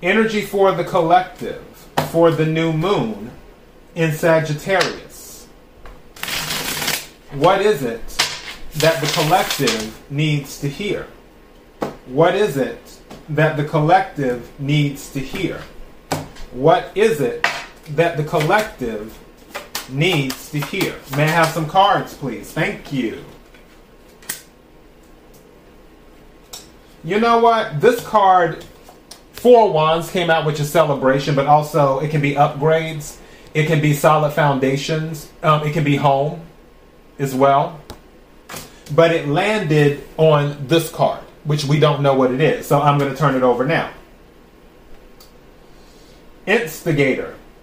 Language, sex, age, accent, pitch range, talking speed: English, male, 30-49, American, 145-185 Hz, 125 wpm